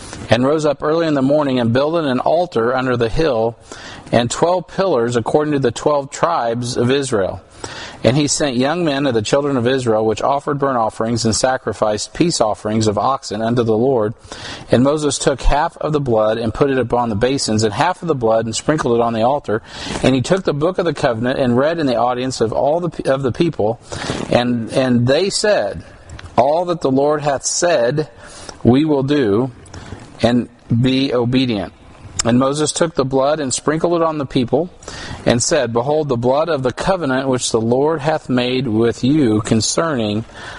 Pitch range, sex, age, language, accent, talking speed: 115-145 Hz, male, 40-59, English, American, 195 wpm